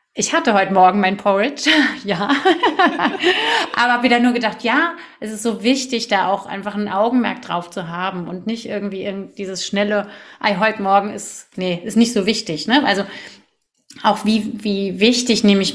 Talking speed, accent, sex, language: 185 wpm, German, female, German